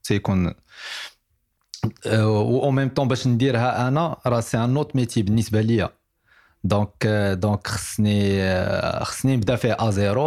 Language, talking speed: Arabic, 130 wpm